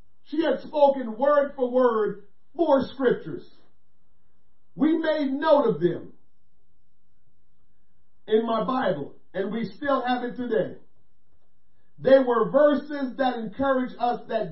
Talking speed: 120 wpm